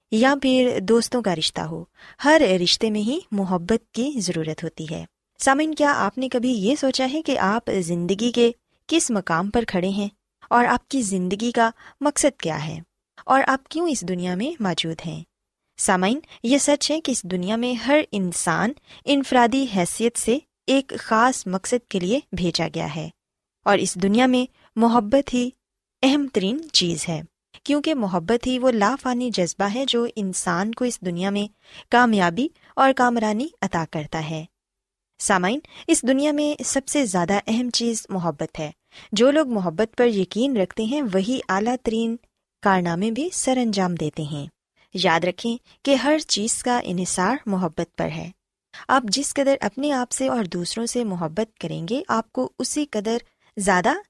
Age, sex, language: 20-39, female, Urdu